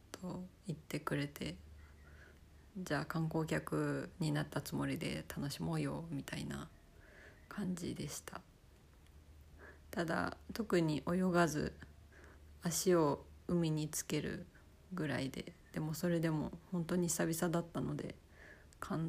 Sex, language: female, Japanese